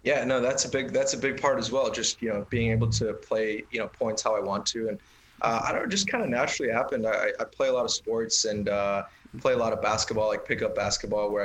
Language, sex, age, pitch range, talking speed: English, male, 20-39, 105-115 Hz, 280 wpm